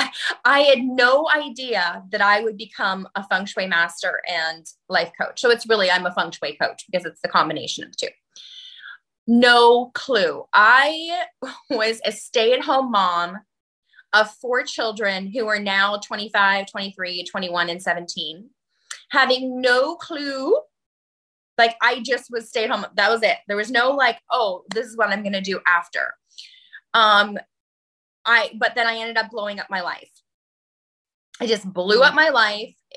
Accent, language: American, English